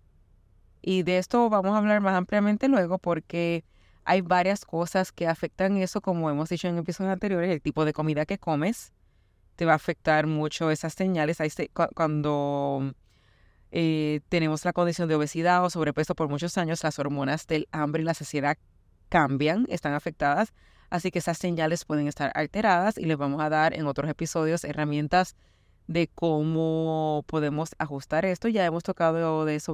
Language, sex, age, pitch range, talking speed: Spanish, female, 30-49, 155-205 Hz, 165 wpm